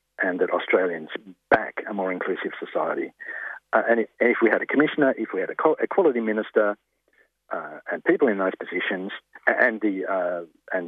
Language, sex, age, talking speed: English, male, 50-69, 160 wpm